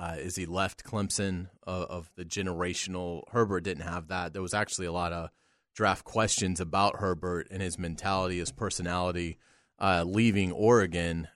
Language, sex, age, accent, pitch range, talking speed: English, male, 30-49, American, 90-110 Hz, 165 wpm